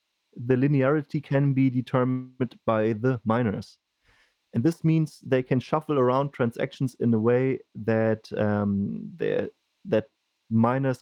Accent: German